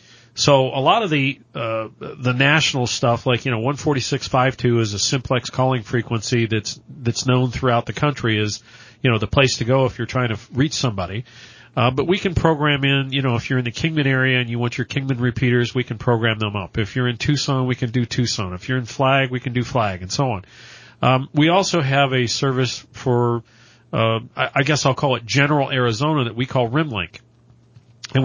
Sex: male